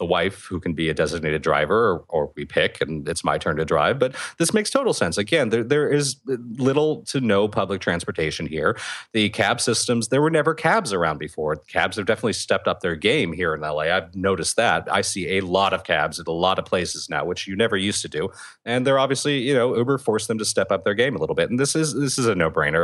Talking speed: 250 wpm